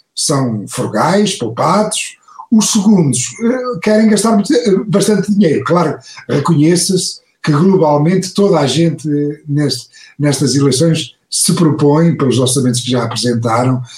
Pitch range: 135-185 Hz